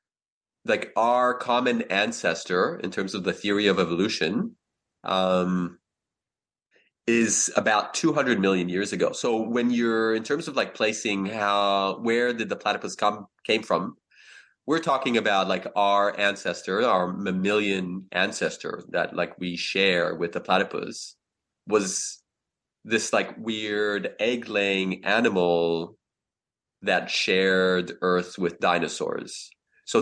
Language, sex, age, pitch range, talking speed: English, male, 30-49, 90-110 Hz, 125 wpm